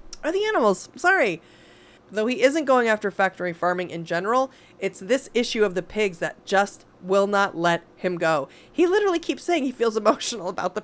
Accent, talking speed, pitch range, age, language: American, 190 wpm, 180-270 Hz, 30-49, English